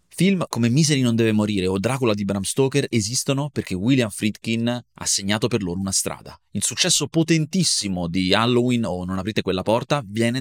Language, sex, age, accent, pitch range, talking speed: Italian, male, 30-49, native, 95-135 Hz, 185 wpm